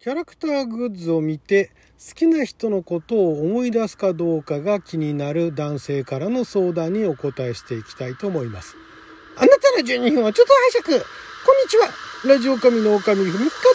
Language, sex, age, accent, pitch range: Japanese, male, 40-59, native, 160-245 Hz